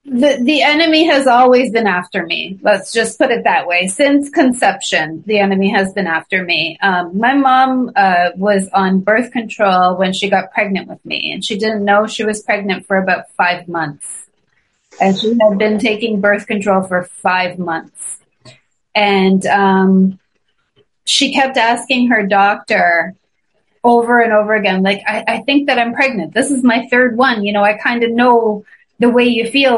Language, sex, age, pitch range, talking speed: English, female, 30-49, 190-245 Hz, 180 wpm